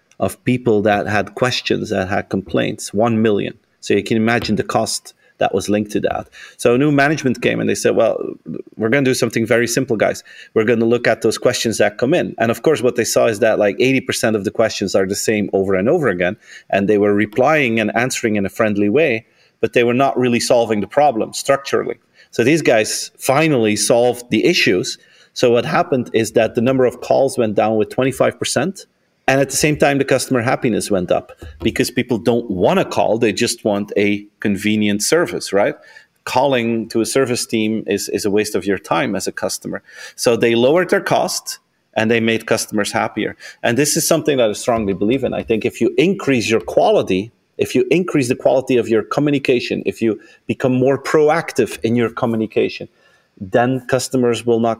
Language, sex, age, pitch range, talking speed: English, male, 30-49, 105-130 Hz, 210 wpm